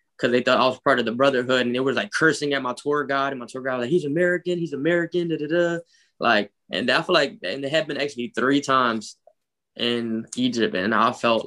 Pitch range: 120-150 Hz